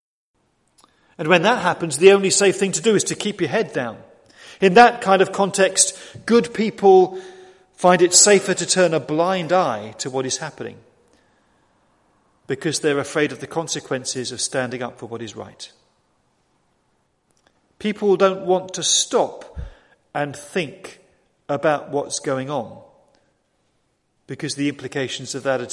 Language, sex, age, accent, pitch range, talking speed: English, male, 40-59, British, 150-195 Hz, 150 wpm